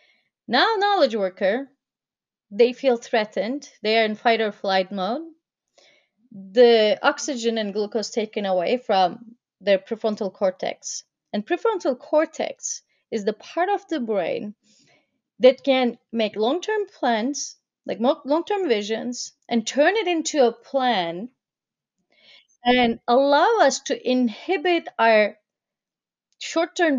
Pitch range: 215-275 Hz